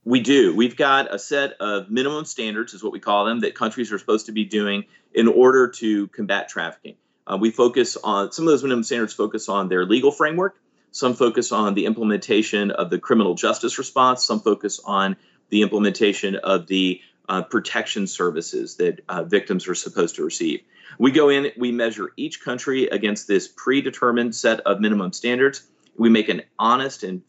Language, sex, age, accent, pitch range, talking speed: English, male, 30-49, American, 105-140 Hz, 190 wpm